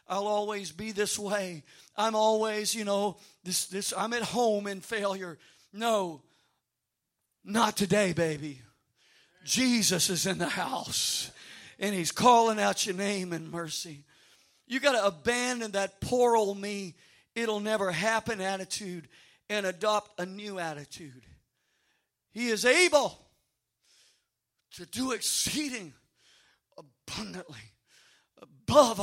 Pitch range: 190-270 Hz